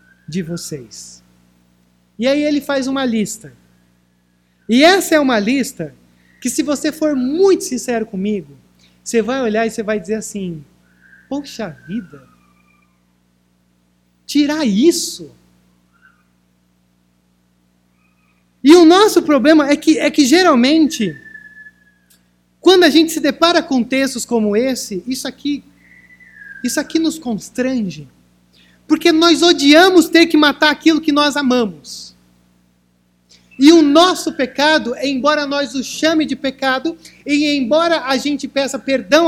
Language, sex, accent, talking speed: Portuguese, male, Brazilian, 125 wpm